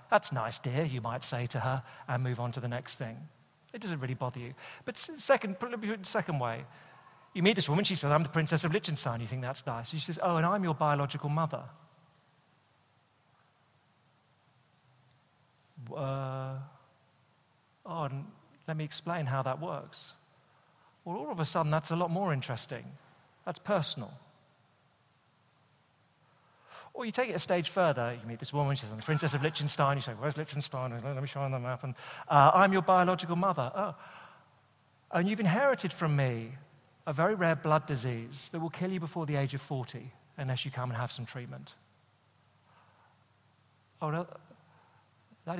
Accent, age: British, 40-59